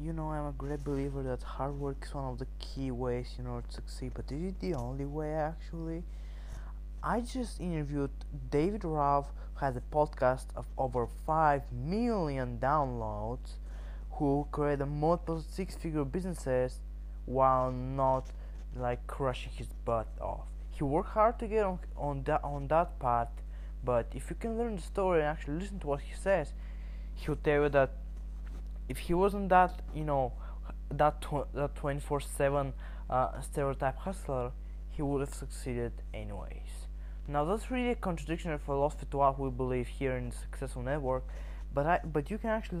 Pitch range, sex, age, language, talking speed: 125-155 Hz, male, 20-39, English, 170 wpm